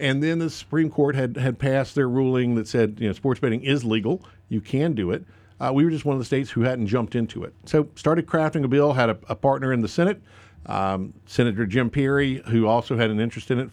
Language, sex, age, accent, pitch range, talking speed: English, male, 50-69, American, 100-130 Hz, 255 wpm